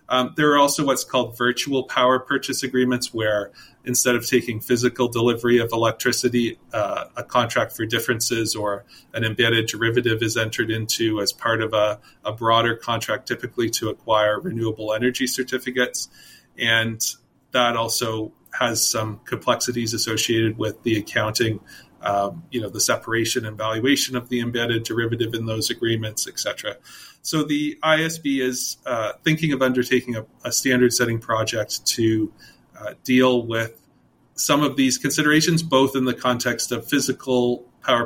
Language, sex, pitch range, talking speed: English, male, 115-125 Hz, 150 wpm